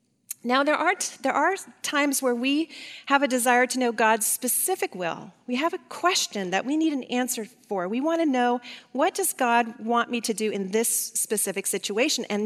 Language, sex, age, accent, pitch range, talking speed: English, female, 40-59, American, 210-280 Hz, 205 wpm